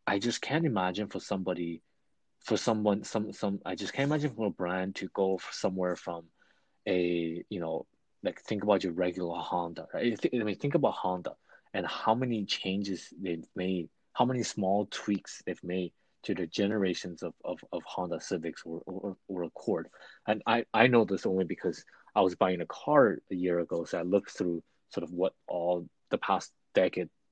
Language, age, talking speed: English, 20-39, 190 wpm